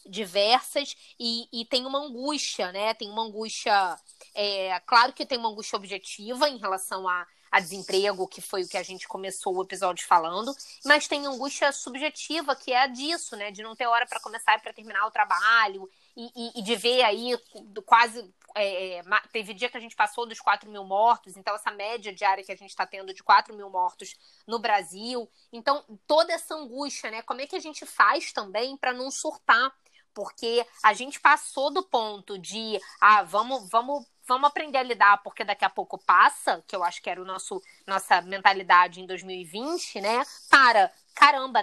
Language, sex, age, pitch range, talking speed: Portuguese, female, 20-39, 200-265 Hz, 190 wpm